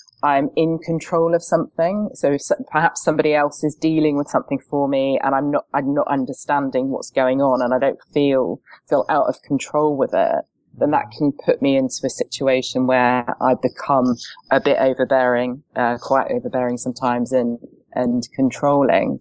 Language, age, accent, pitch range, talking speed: English, 20-39, British, 130-150 Hz, 175 wpm